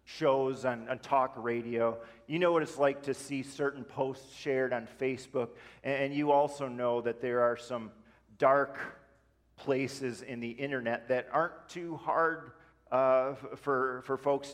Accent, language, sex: American, English, male